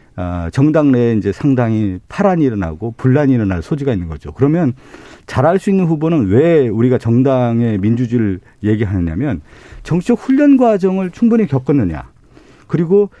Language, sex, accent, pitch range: Korean, male, native, 120-195 Hz